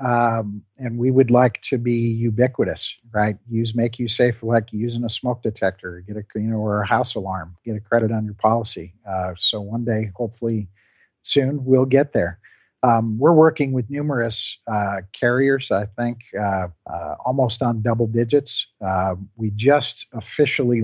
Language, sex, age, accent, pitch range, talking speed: English, male, 50-69, American, 105-130 Hz, 175 wpm